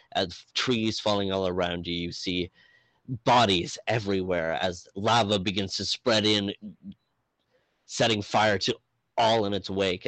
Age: 30-49